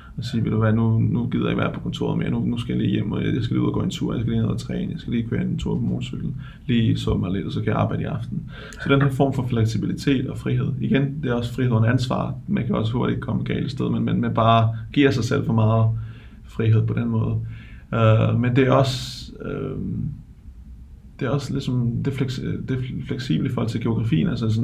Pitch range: 110-130 Hz